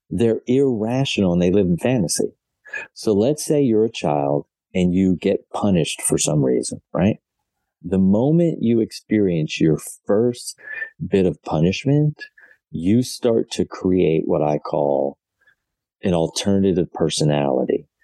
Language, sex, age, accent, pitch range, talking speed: English, male, 40-59, American, 80-115 Hz, 135 wpm